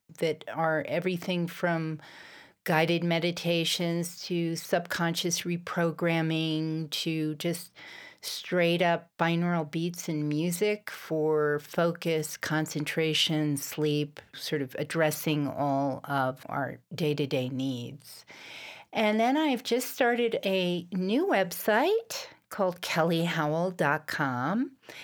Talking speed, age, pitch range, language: 90 wpm, 50-69, 155-190 Hz, English